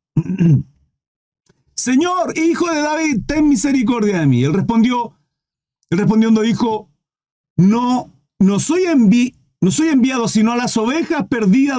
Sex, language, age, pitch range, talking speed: male, Spanish, 50-69, 145-235 Hz, 115 wpm